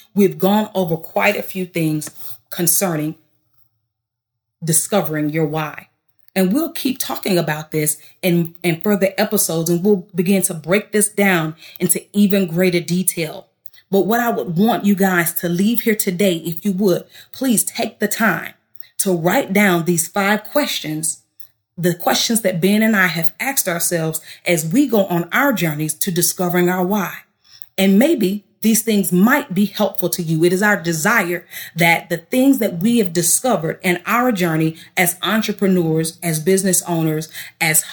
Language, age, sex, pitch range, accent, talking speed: English, 30-49, female, 165-205 Hz, American, 165 wpm